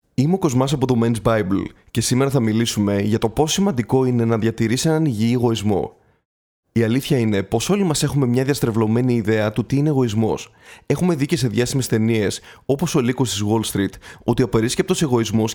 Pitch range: 110-135 Hz